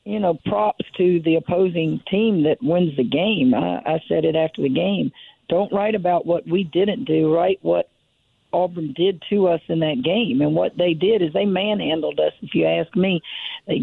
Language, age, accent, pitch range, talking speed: English, 50-69, American, 165-200 Hz, 205 wpm